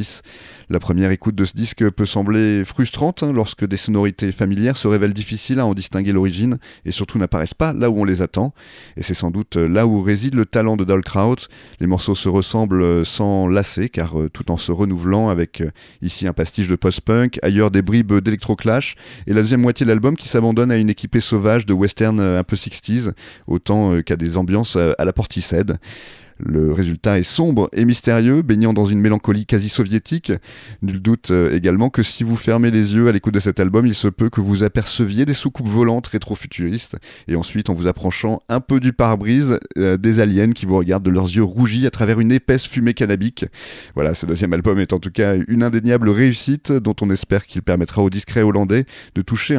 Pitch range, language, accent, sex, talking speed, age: 95-115 Hz, French, French, male, 205 wpm, 30-49